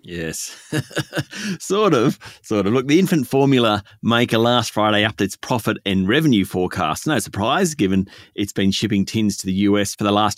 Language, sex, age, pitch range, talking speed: English, male, 30-49, 100-135 Hz, 180 wpm